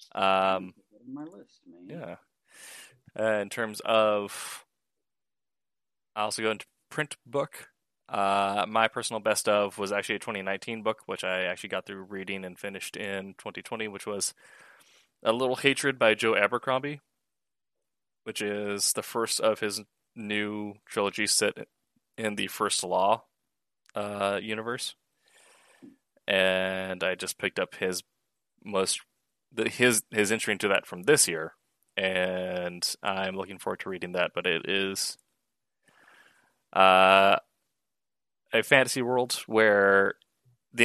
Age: 20-39